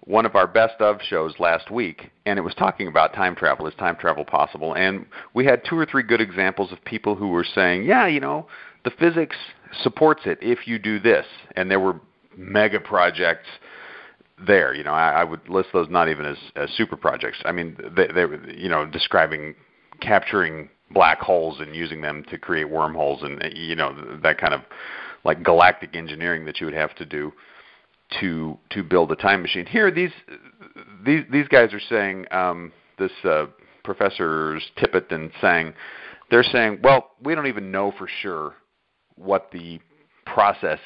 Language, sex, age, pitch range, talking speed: English, male, 40-59, 85-110 Hz, 185 wpm